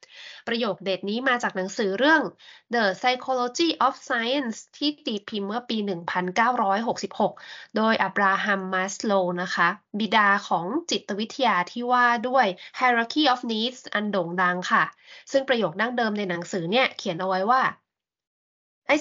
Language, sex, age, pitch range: Thai, female, 20-39, 200-260 Hz